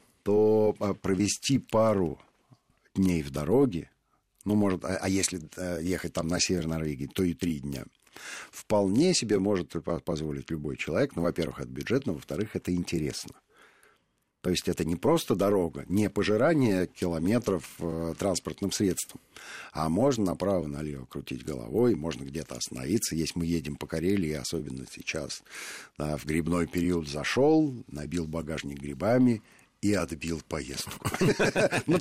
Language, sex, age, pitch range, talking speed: Russian, male, 50-69, 85-110 Hz, 130 wpm